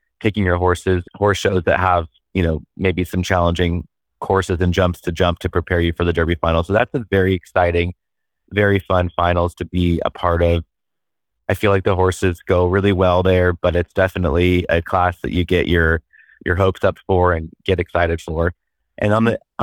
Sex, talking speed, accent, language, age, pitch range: male, 200 wpm, American, English, 30-49, 90-95 Hz